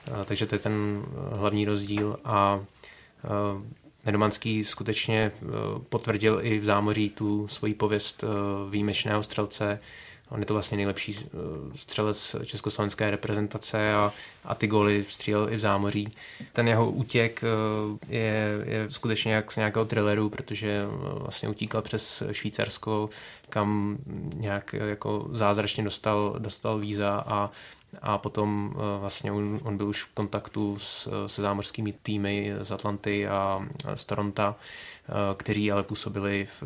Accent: native